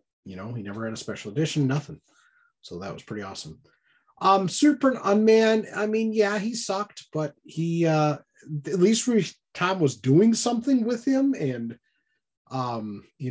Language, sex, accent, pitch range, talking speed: English, male, American, 125-180 Hz, 160 wpm